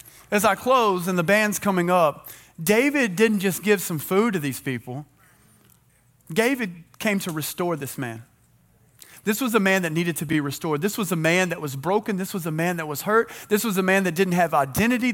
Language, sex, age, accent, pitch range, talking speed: English, male, 30-49, American, 155-200 Hz, 215 wpm